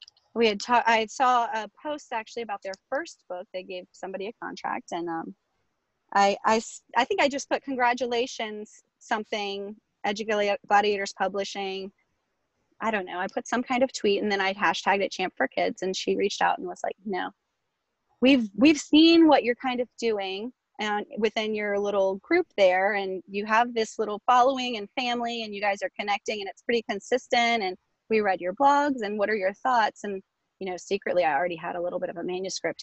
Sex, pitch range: female, 195-255 Hz